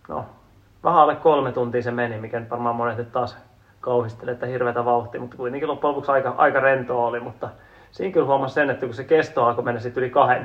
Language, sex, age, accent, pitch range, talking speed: Finnish, male, 30-49, native, 120-150 Hz, 210 wpm